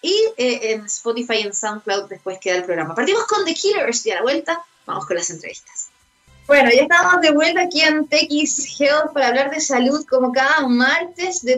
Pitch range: 205-270 Hz